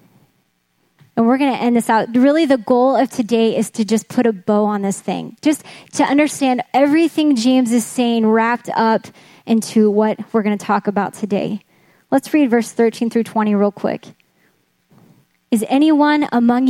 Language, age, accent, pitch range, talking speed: English, 10-29, American, 225-280 Hz, 175 wpm